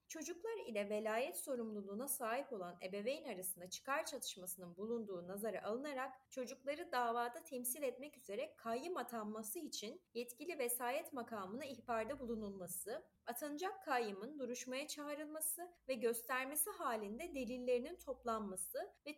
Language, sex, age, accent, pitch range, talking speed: Turkish, female, 30-49, native, 205-285 Hz, 115 wpm